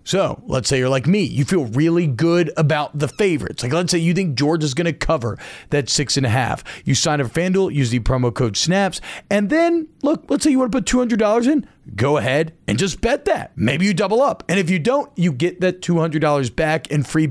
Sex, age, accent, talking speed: male, 40-59, American, 240 wpm